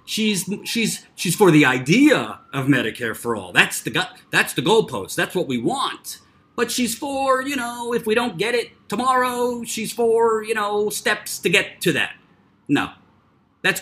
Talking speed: 180 wpm